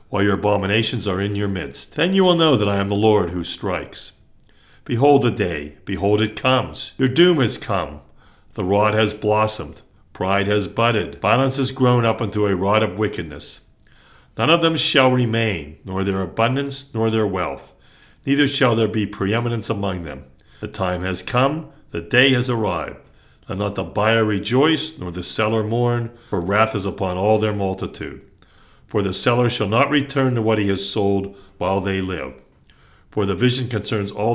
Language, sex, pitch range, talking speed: English, male, 95-120 Hz, 185 wpm